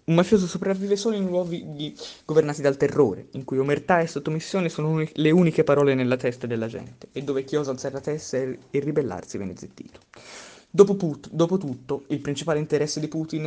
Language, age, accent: Italian, 20-39, native